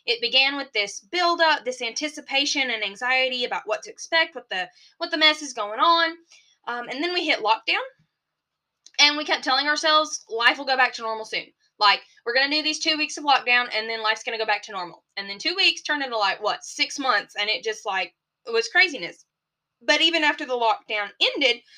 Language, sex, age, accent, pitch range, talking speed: English, female, 10-29, American, 235-325 Hz, 225 wpm